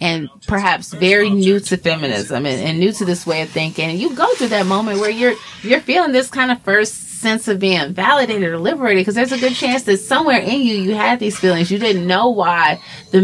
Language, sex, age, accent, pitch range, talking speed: English, female, 30-49, American, 160-215 Hz, 230 wpm